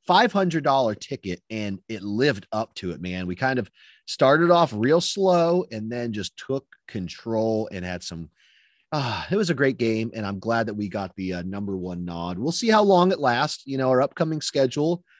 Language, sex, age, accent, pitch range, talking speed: English, male, 30-49, American, 105-165 Hz, 205 wpm